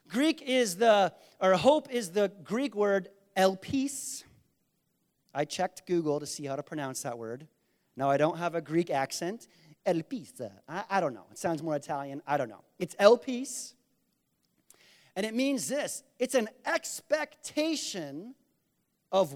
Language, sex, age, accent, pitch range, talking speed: English, male, 40-59, American, 170-255 Hz, 150 wpm